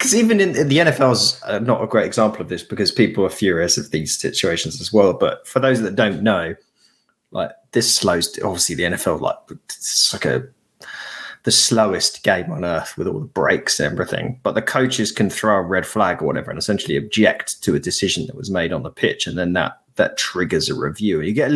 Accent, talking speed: British, 235 wpm